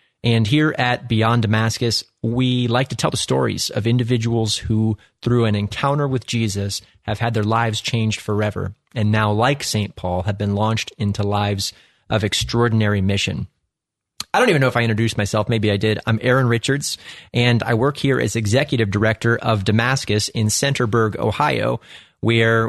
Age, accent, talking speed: 30-49, American, 170 wpm